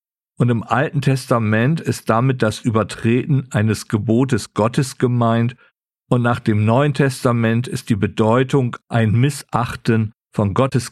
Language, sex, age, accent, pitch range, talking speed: German, male, 50-69, German, 110-135 Hz, 130 wpm